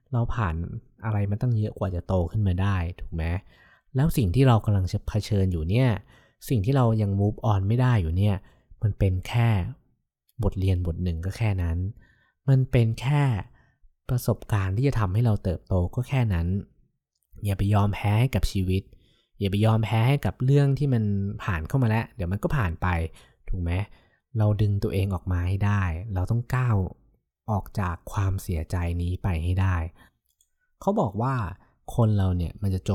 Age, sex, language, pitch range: 20-39, male, Thai, 90-110 Hz